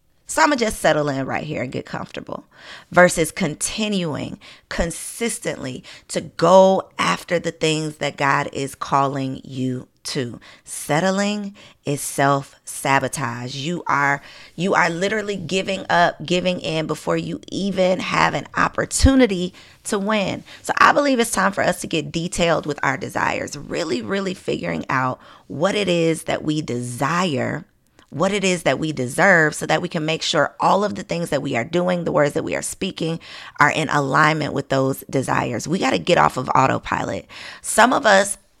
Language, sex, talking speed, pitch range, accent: English, female, 175 wpm, 145-190 Hz, American